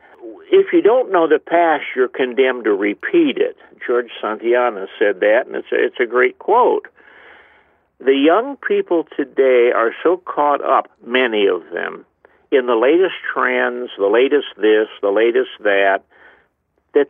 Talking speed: 150 wpm